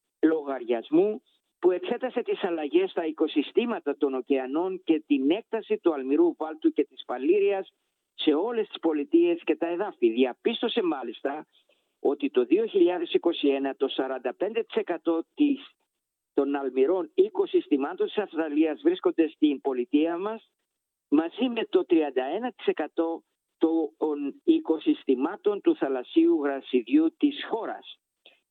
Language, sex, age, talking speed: Greek, male, 50-69, 110 wpm